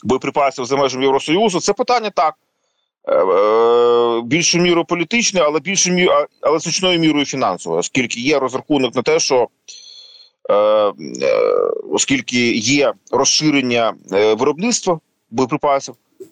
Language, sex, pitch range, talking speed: Ukrainian, male, 130-210 Hz, 90 wpm